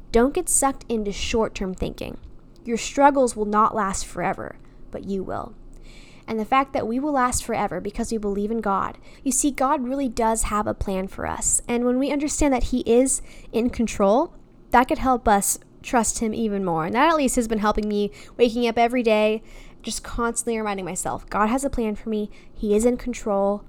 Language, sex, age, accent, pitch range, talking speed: English, female, 10-29, American, 200-245 Hz, 205 wpm